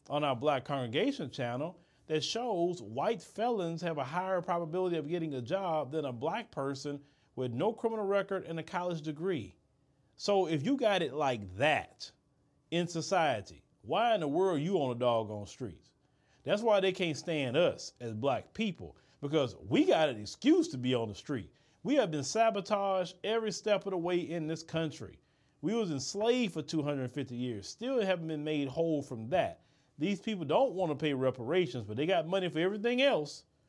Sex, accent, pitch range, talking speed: male, American, 145-180 Hz, 190 wpm